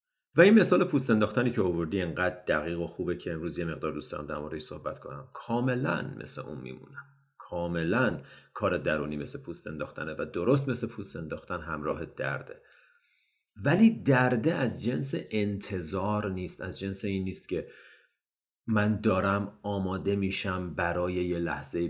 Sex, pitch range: male, 90-130 Hz